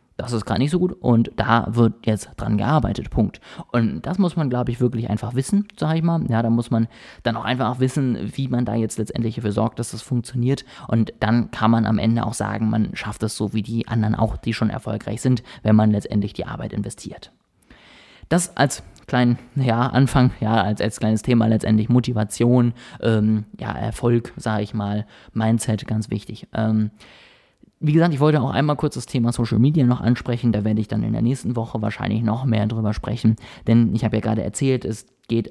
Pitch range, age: 110-125 Hz, 20-39